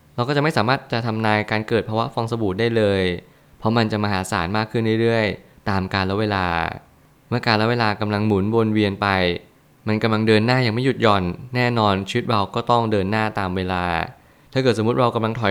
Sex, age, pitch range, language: male, 20-39, 100-115 Hz, Thai